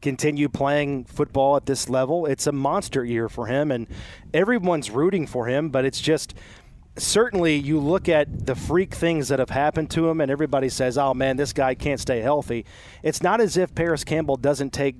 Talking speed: 200 wpm